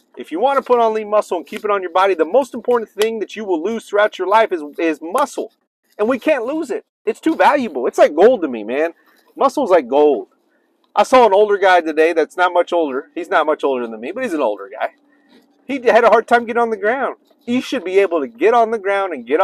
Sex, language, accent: male, English, American